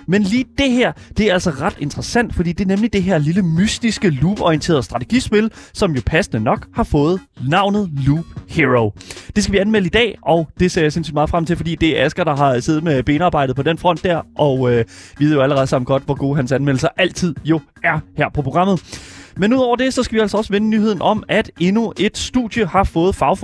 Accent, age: native, 20-39